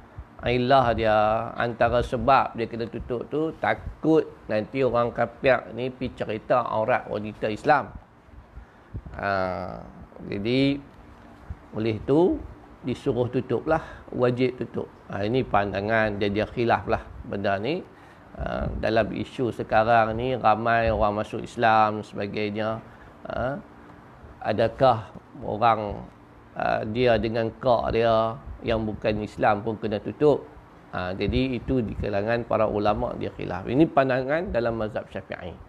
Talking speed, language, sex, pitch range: 115 wpm, Malay, male, 100-130 Hz